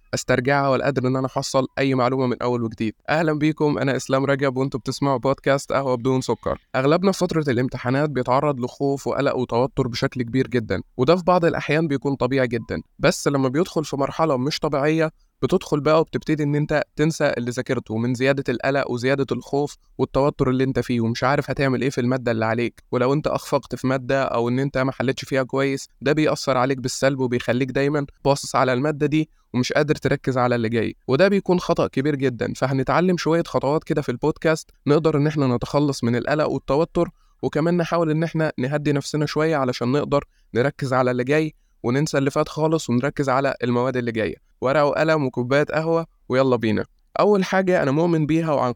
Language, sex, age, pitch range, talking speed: Arabic, male, 20-39, 130-150 Hz, 185 wpm